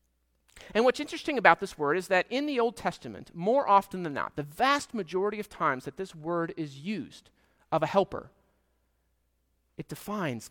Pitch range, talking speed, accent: 160-240 Hz, 175 wpm, American